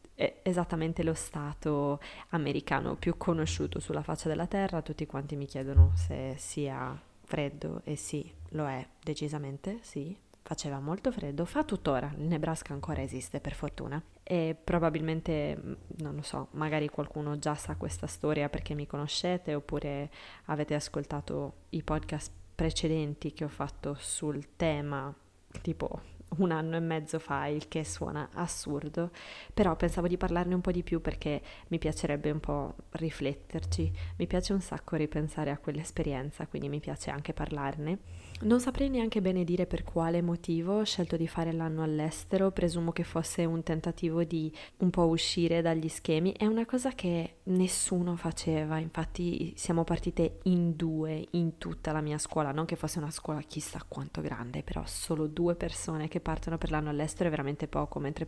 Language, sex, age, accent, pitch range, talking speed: Italian, female, 20-39, native, 150-170 Hz, 165 wpm